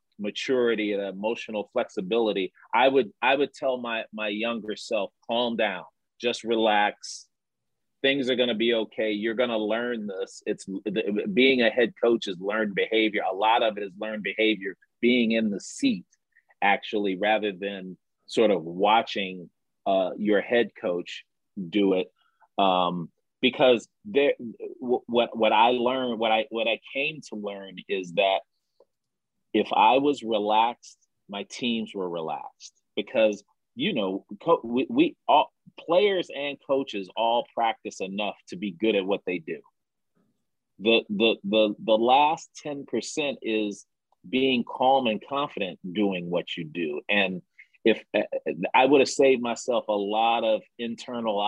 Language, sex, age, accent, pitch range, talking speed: English, male, 30-49, American, 105-125 Hz, 150 wpm